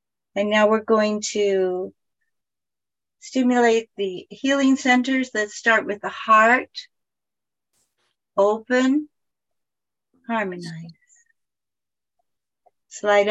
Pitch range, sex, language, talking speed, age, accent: 195-250 Hz, female, English, 75 wpm, 60-79, American